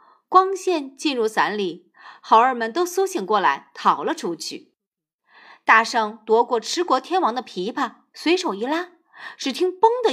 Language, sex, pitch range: Chinese, female, 215-335 Hz